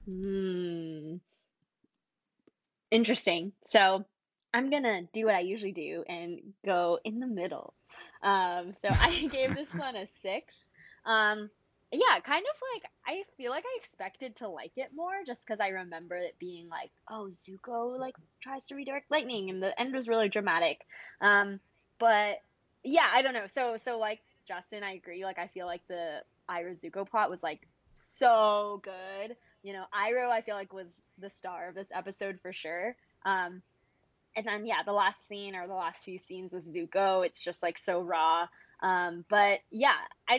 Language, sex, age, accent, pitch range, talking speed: English, female, 20-39, American, 180-245 Hz, 175 wpm